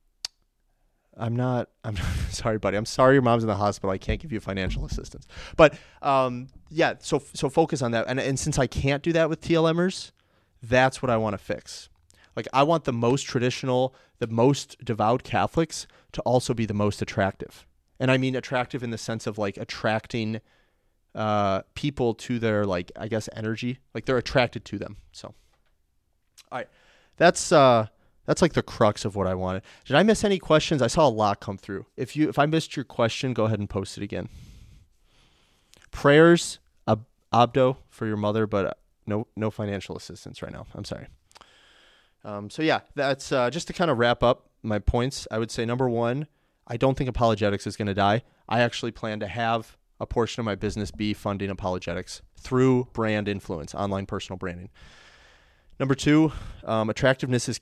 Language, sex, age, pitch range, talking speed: English, male, 30-49, 105-130 Hz, 190 wpm